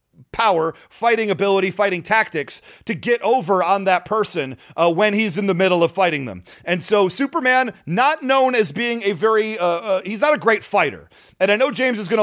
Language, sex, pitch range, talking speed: English, male, 180-230 Hz, 205 wpm